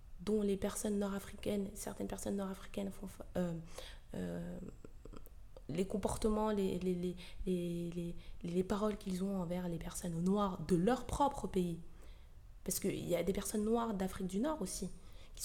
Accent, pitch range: French, 180-215 Hz